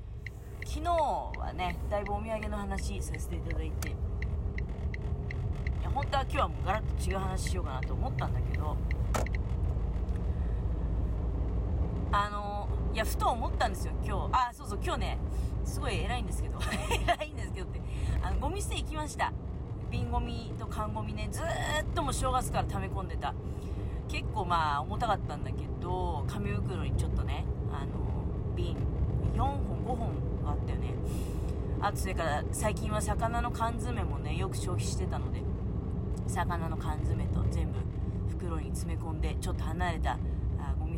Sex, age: female, 40-59